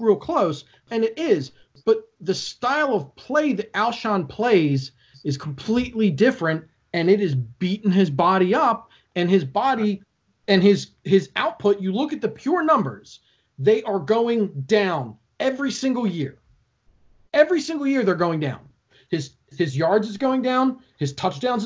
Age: 40-59